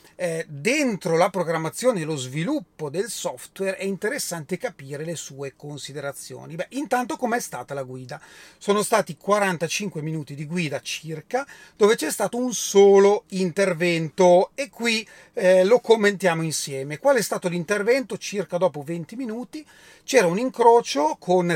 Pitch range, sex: 160-220 Hz, male